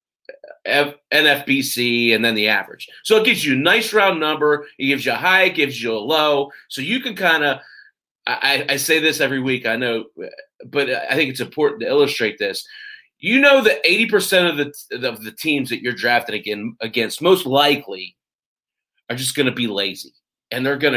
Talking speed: 200 wpm